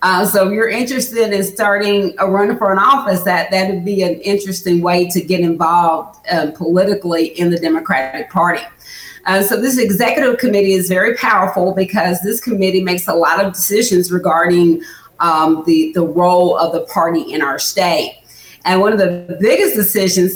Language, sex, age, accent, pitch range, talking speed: English, female, 40-59, American, 175-205 Hz, 175 wpm